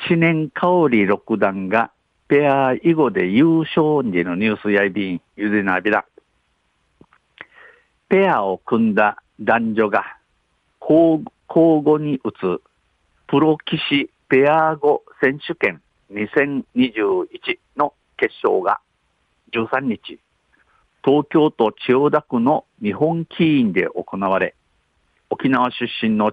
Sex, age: male, 50-69